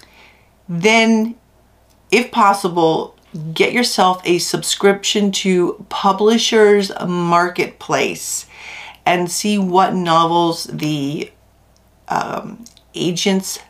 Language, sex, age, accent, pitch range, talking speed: English, female, 40-59, American, 170-220 Hz, 75 wpm